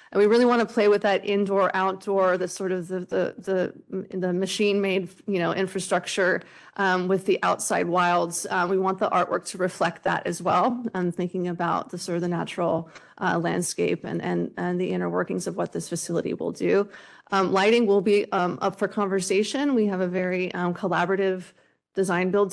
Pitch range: 175-200 Hz